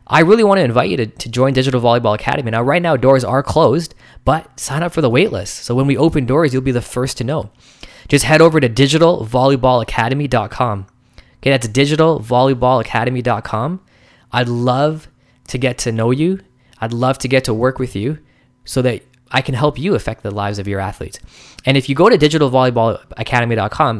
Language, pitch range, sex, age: English, 110-140 Hz, male, 20-39